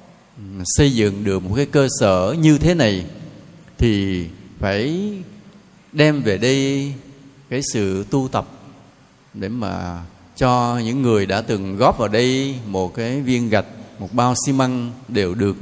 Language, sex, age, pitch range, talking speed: Vietnamese, male, 20-39, 105-150 Hz, 150 wpm